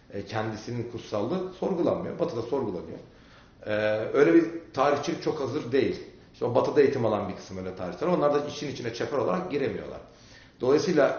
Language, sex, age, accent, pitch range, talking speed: Turkish, male, 40-59, native, 105-135 Hz, 155 wpm